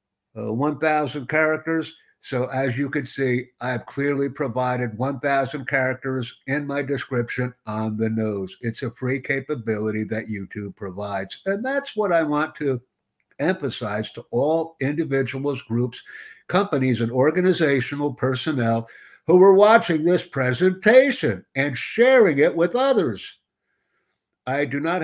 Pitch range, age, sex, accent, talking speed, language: 120-155 Hz, 60-79, male, American, 130 wpm, English